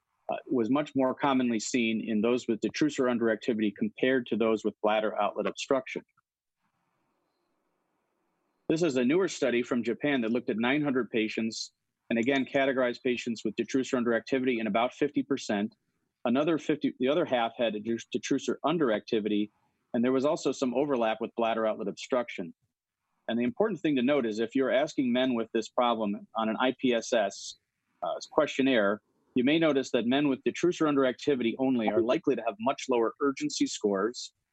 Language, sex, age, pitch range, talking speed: English, male, 40-59, 110-135 Hz, 160 wpm